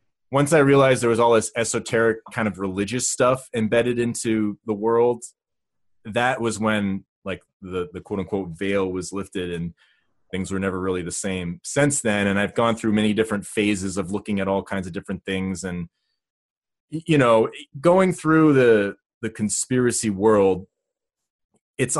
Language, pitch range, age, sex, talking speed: English, 100-125 Hz, 30-49, male, 165 wpm